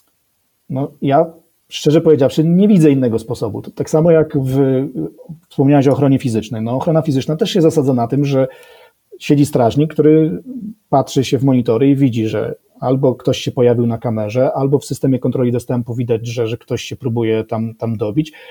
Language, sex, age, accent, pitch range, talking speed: Polish, male, 40-59, native, 125-165 Hz, 180 wpm